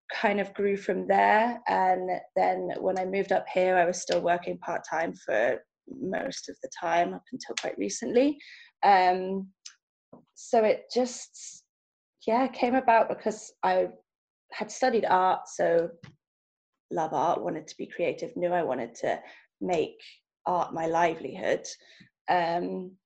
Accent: British